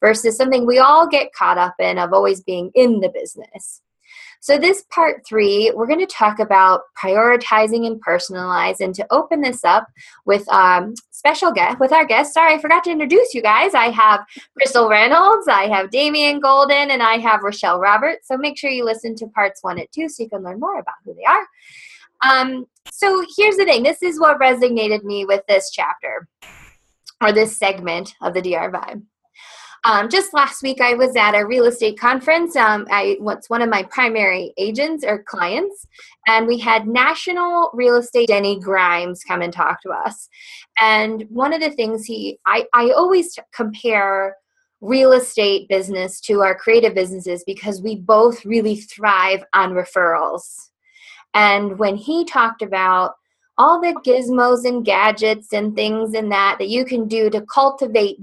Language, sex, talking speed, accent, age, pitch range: English, female, 180 wpm, American, 20-39, 205-285 Hz